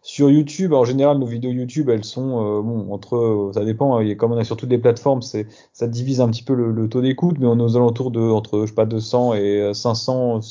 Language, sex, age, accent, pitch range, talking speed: French, male, 20-39, French, 115-135 Hz, 265 wpm